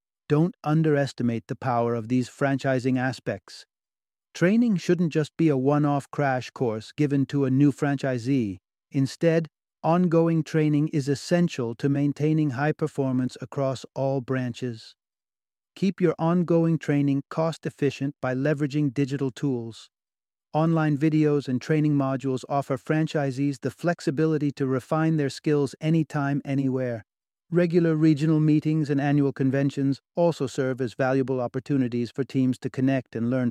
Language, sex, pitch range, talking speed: English, male, 130-155 Hz, 135 wpm